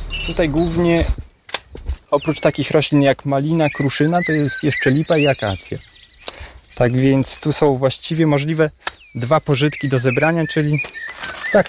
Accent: native